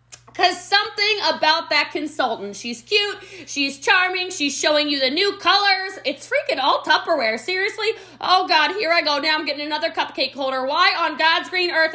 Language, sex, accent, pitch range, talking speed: English, female, American, 225-305 Hz, 180 wpm